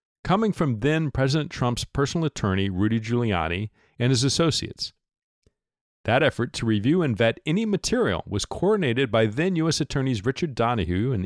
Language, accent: English, American